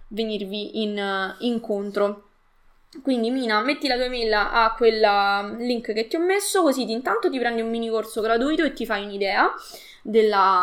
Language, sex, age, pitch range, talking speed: Italian, female, 20-39, 220-310 Hz, 175 wpm